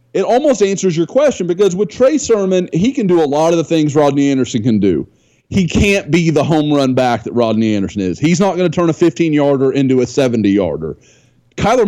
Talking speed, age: 215 wpm, 30-49